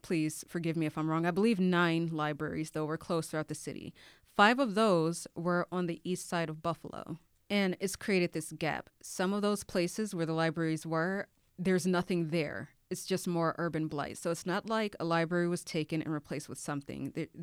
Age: 30-49